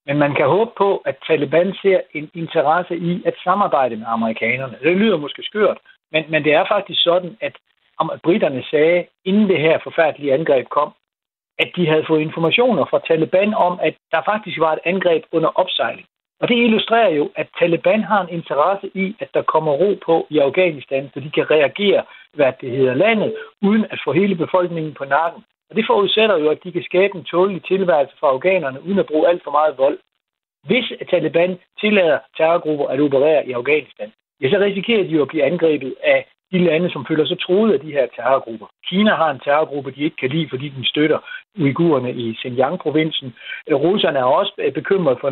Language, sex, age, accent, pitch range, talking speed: Danish, male, 60-79, native, 150-190 Hz, 200 wpm